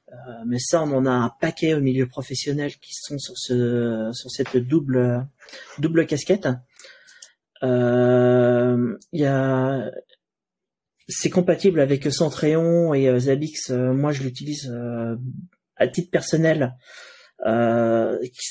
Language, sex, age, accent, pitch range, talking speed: French, male, 30-49, French, 125-160 Hz, 115 wpm